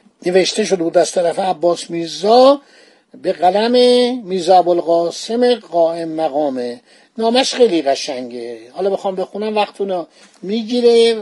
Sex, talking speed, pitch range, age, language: male, 120 wpm, 180-235 Hz, 50-69, Persian